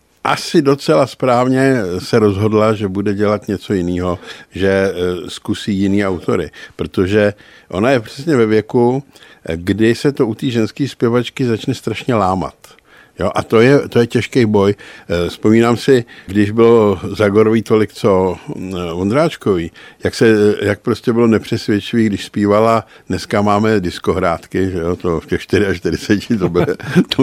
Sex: male